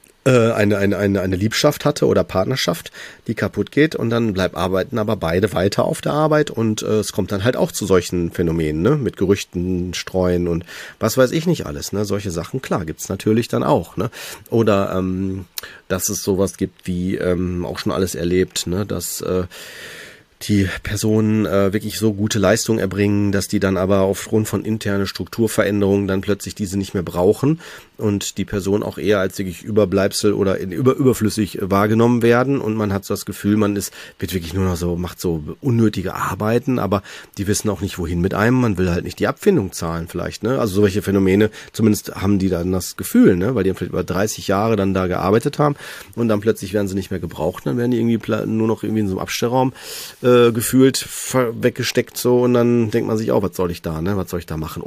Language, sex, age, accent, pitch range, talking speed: German, male, 30-49, German, 95-110 Hz, 215 wpm